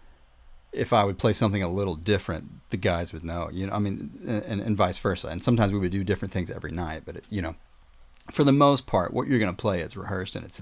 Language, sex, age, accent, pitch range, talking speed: English, male, 30-49, American, 85-110 Hz, 260 wpm